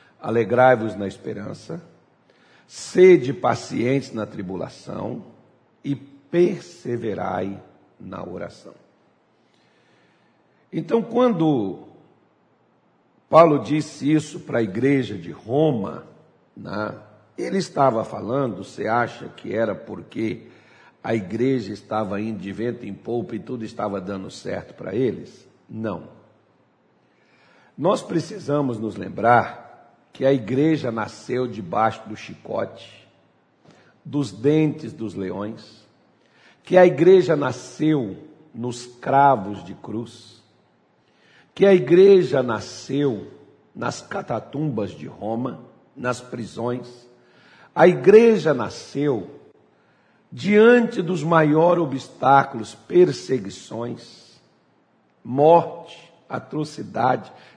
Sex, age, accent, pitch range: male, 60-79, Brazilian, 110-155 Hz